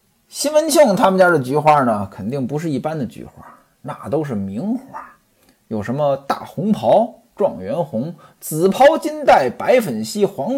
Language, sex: Chinese, male